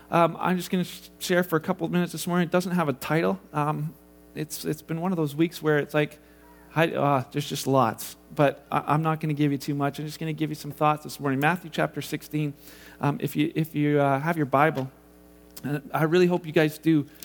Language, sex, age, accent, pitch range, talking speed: English, male, 40-59, American, 140-175 Hz, 255 wpm